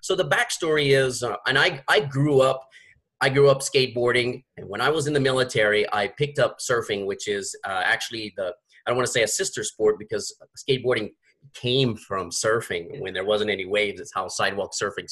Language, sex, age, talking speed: English, male, 30-49, 205 wpm